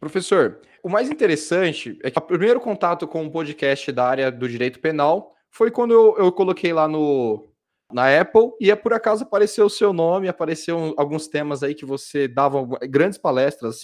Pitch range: 135-185 Hz